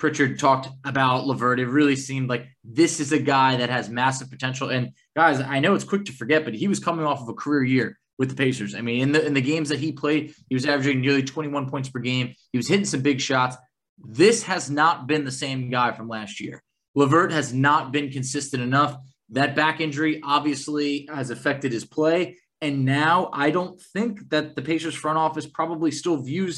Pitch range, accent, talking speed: 130-160 Hz, American, 215 wpm